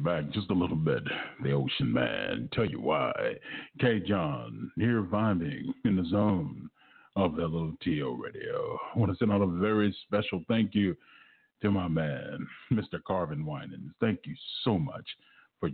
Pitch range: 90-105 Hz